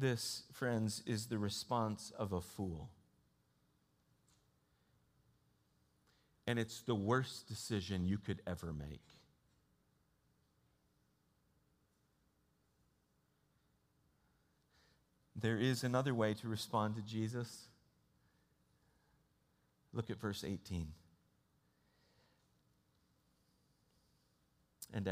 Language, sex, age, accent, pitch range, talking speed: English, male, 40-59, American, 100-130 Hz, 70 wpm